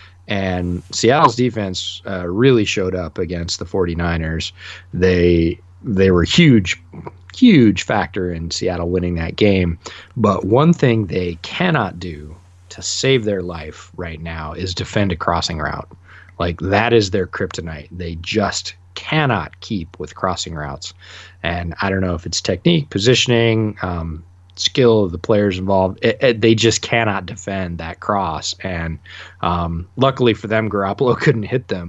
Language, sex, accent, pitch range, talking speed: English, male, American, 90-105 Hz, 150 wpm